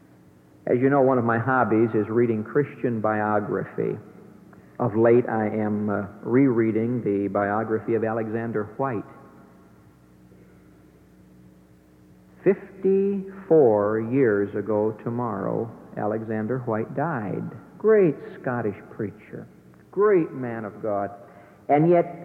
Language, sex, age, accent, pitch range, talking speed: English, male, 60-79, American, 105-135 Hz, 100 wpm